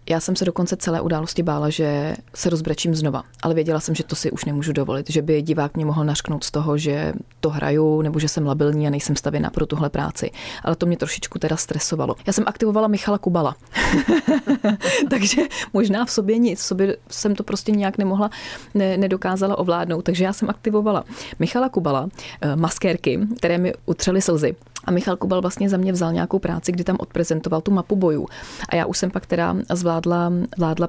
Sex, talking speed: female, 195 wpm